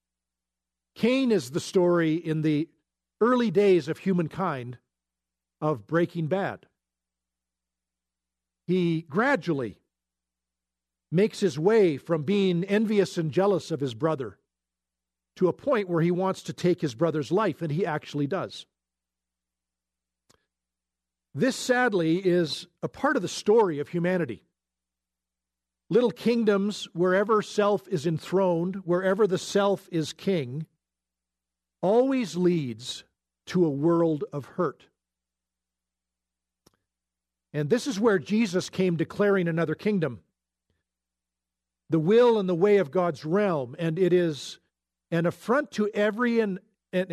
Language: English